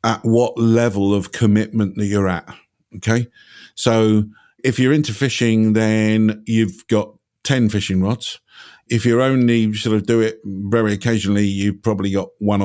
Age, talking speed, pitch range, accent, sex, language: 50-69, 160 wpm, 100-115 Hz, British, male, English